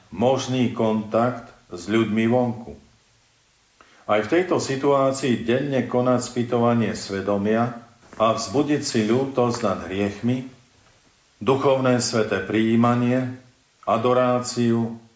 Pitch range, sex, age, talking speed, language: 110-125 Hz, male, 50-69, 90 wpm, Slovak